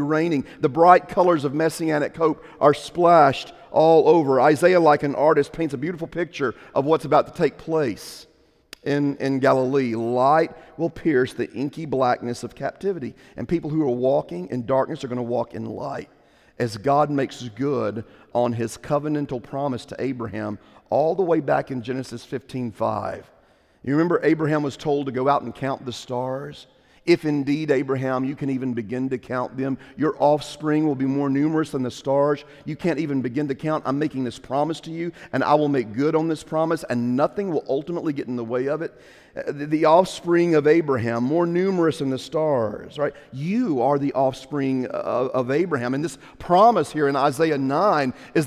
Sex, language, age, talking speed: male, English, 40-59, 190 wpm